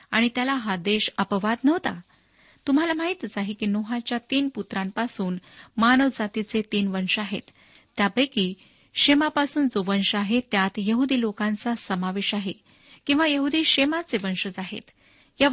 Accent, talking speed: native, 130 wpm